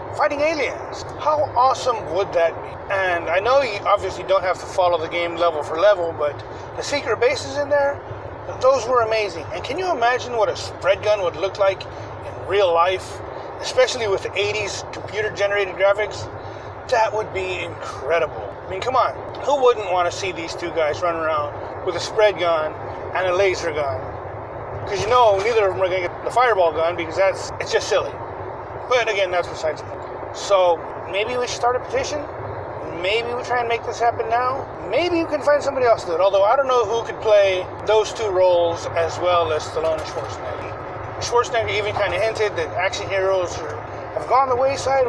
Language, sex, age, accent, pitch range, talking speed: English, male, 30-49, American, 175-245 Hz, 205 wpm